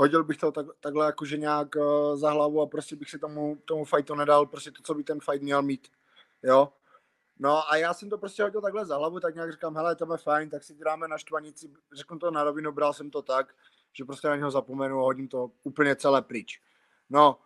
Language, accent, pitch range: Czech, native, 145-175 Hz